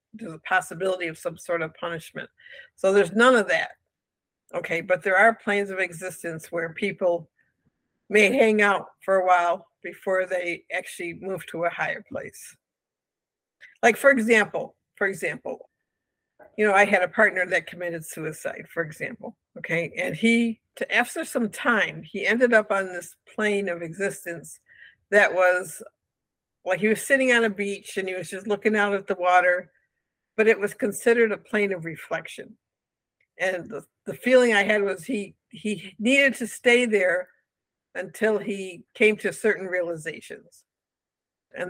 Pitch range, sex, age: 180-220 Hz, female, 60-79